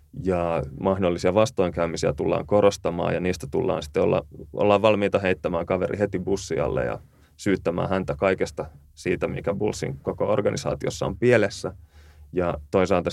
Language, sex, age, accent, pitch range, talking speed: Finnish, male, 30-49, native, 80-100 Hz, 135 wpm